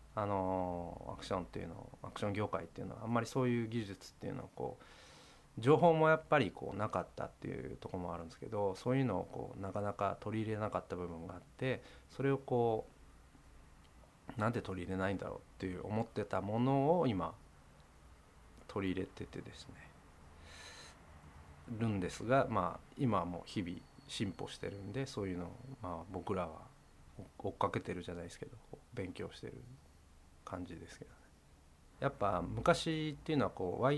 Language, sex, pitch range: Japanese, male, 85-125 Hz